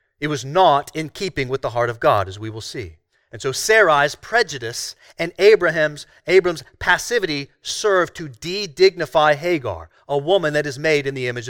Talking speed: 175 wpm